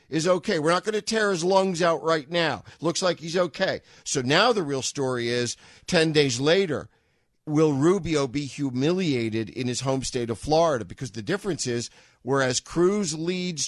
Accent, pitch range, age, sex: American, 125-170 Hz, 50-69, male